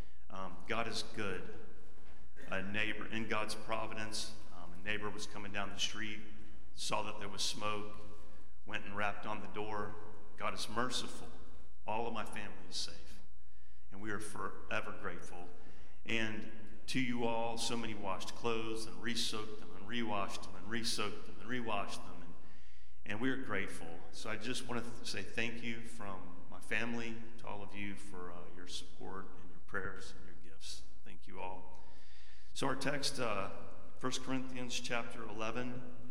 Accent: American